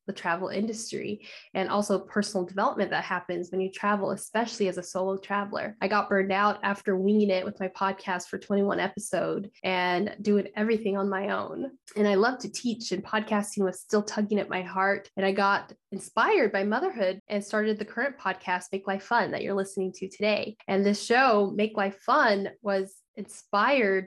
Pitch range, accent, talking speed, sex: 195-220 Hz, American, 190 wpm, female